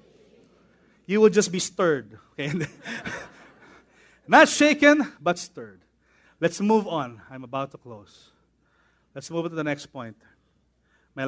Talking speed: 135 wpm